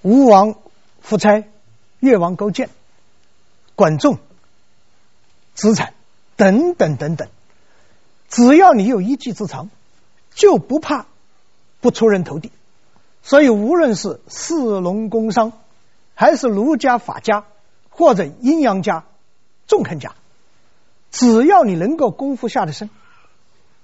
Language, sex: Chinese, male